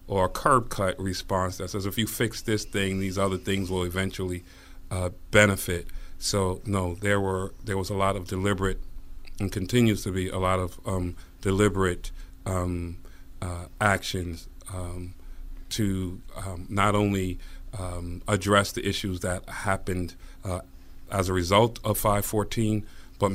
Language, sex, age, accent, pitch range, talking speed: English, male, 40-59, American, 90-100 Hz, 150 wpm